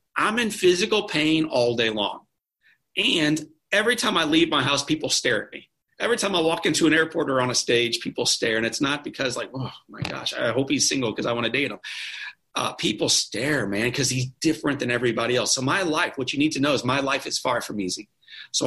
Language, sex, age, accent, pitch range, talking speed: English, male, 40-59, American, 115-155 Hz, 240 wpm